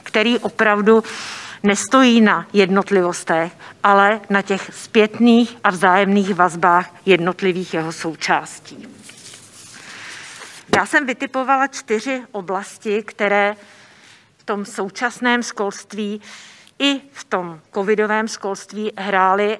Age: 50-69